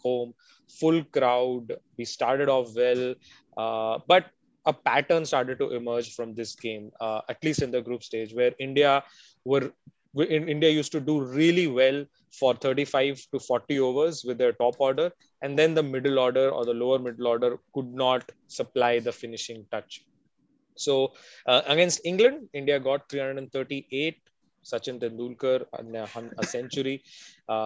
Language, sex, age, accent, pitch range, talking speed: English, male, 20-39, Indian, 120-145 Hz, 150 wpm